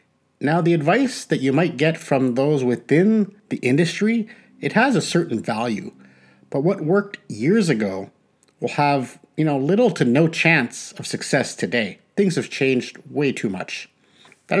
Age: 50-69